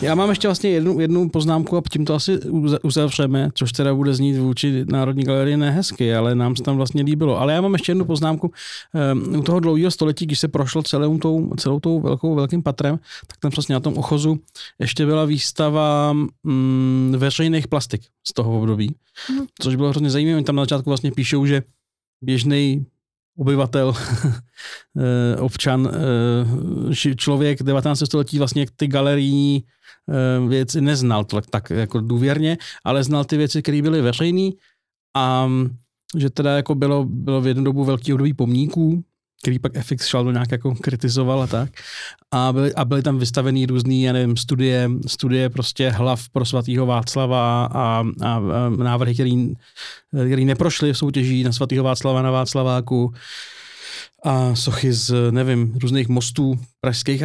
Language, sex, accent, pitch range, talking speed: Czech, male, native, 125-150 Hz, 160 wpm